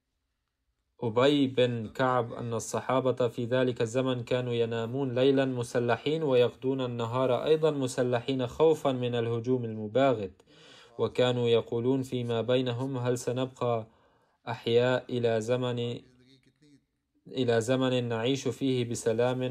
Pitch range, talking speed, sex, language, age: 115-130 Hz, 105 wpm, male, Arabic, 20-39